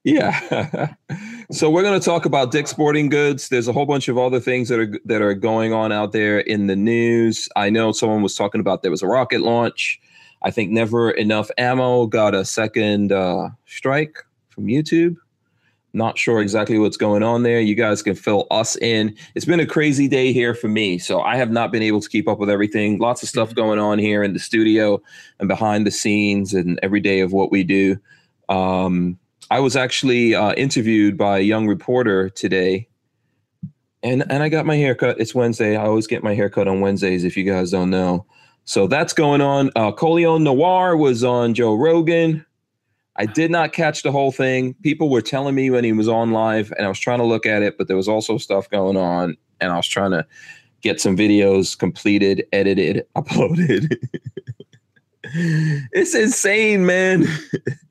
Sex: male